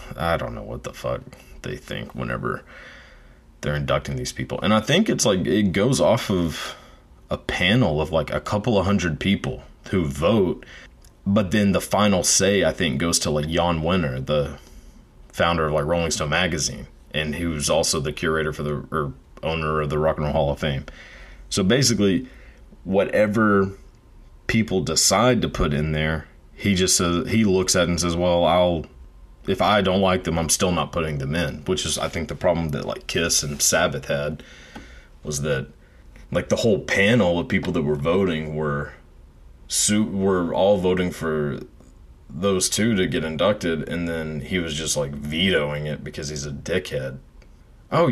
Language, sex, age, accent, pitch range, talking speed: English, male, 30-49, American, 75-90 Hz, 185 wpm